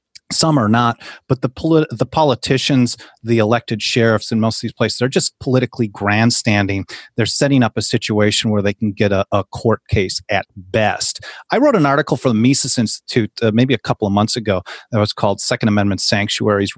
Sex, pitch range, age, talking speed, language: male, 110-140 Hz, 30-49, 200 wpm, English